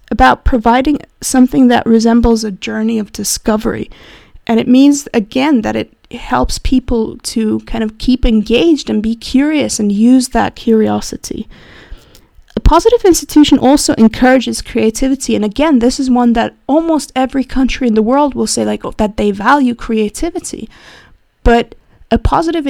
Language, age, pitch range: English, 20-39, 220-265 Hz